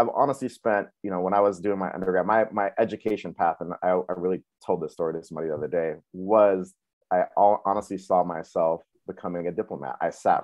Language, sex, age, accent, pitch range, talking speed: English, male, 30-49, American, 85-100 Hz, 220 wpm